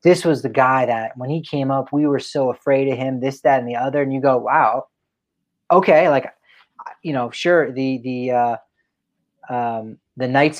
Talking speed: 200 wpm